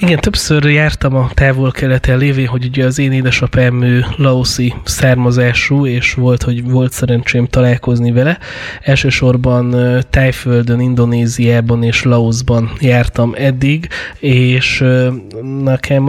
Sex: male